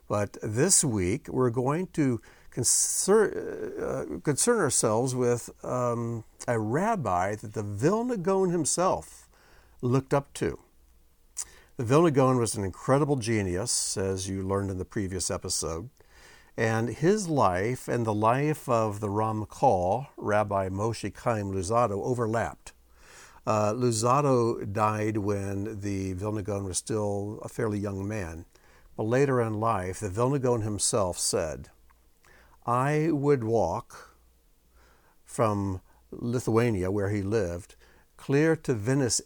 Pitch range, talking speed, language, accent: 95-125 Hz, 120 wpm, English, American